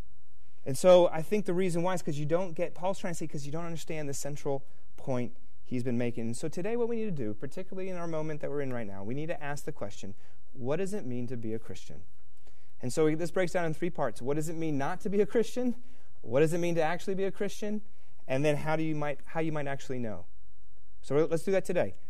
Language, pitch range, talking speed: English, 135-195 Hz, 265 wpm